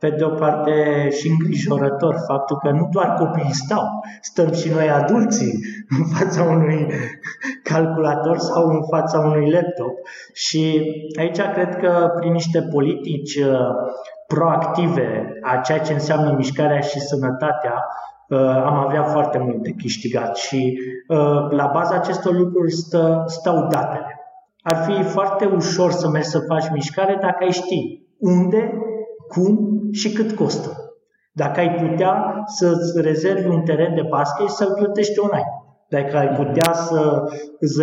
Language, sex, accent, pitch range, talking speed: Romanian, male, native, 150-185 Hz, 140 wpm